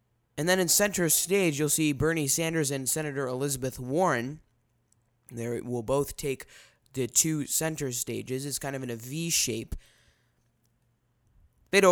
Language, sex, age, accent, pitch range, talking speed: English, male, 20-39, American, 120-175 Hz, 145 wpm